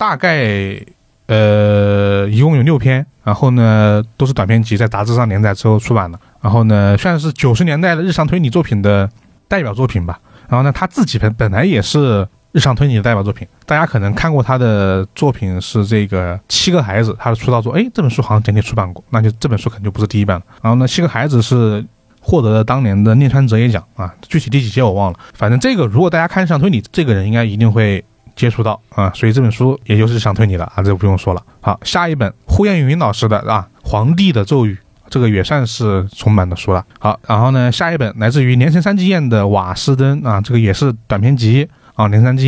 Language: Chinese